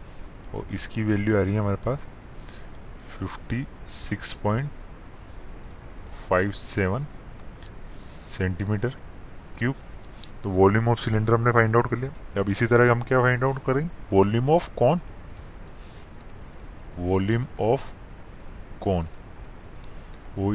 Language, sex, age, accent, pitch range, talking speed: Hindi, male, 20-39, native, 95-115 Hz, 100 wpm